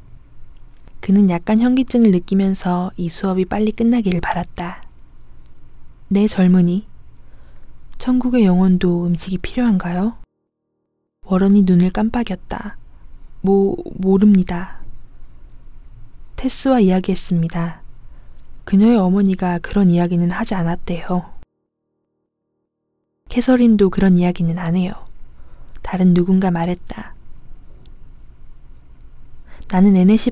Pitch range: 175-205 Hz